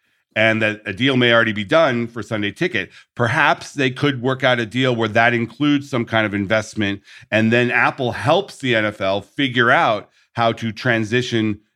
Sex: male